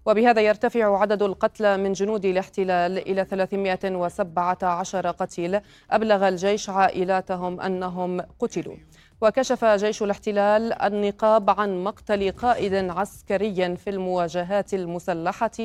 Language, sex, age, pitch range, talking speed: Arabic, female, 30-49, 180-205 Hz, 100 wpm